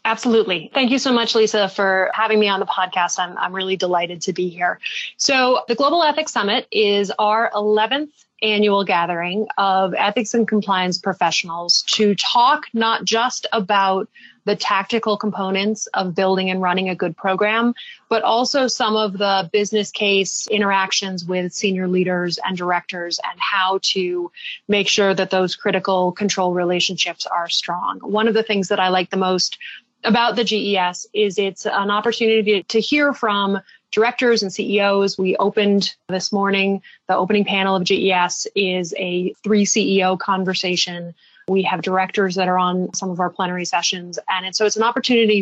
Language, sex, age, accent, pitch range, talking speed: English, female, 30-49, American, 185-215 Hz, 165 wpm